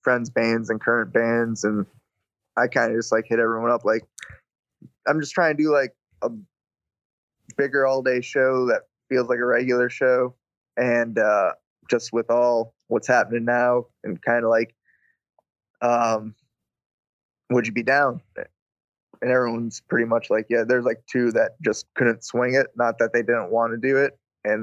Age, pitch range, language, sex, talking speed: 20-39, 115-125 Hz, English, male, 175 wpm